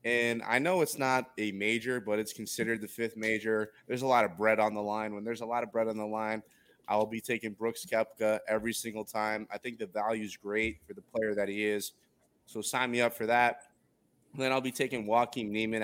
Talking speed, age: 240 wpm, 20-39